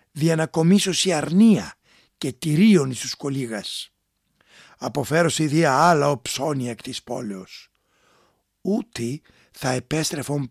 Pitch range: 120-165 Hz